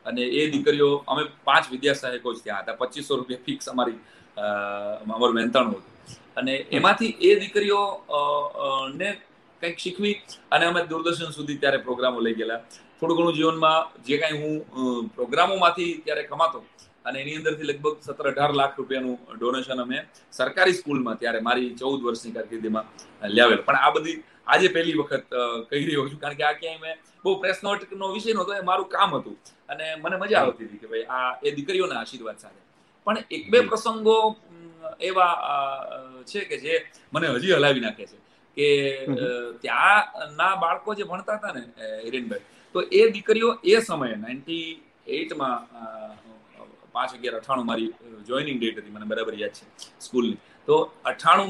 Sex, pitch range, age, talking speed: male, 125-190 Hz, 30-49, 90 wpm